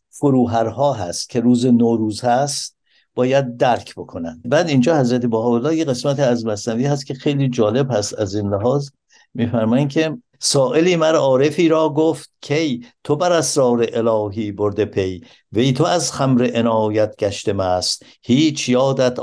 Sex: male